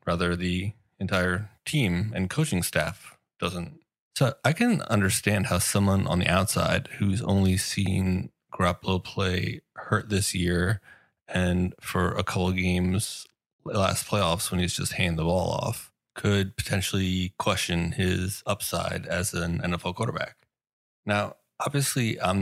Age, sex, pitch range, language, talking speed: 20-39, male, 90-110 Hz, English, 140 wpm